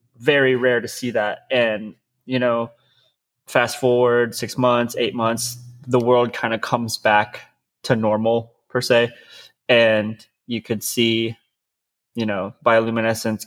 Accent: American